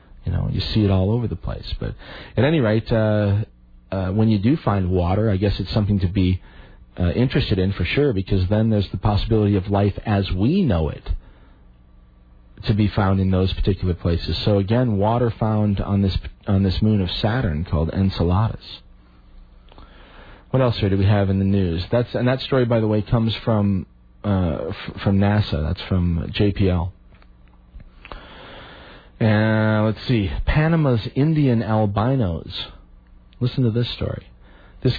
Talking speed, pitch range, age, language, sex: 170 wpm, 90-115 Hz, 40-59, English, male